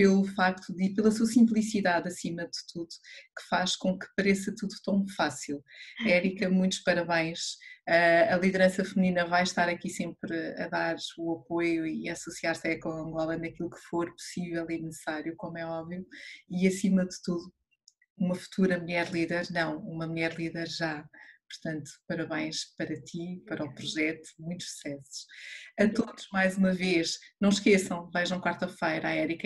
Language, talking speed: Portuguese, 160 wpm